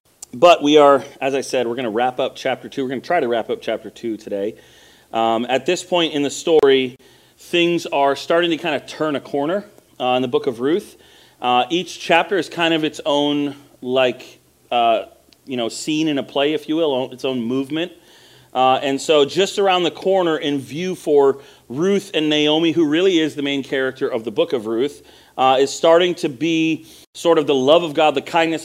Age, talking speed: 40-59, 220 wpm